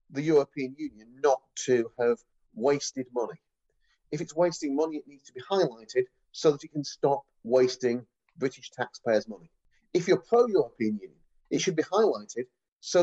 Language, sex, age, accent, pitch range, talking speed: English, male, 40-59, British, 125-175 Hz, 160 wpm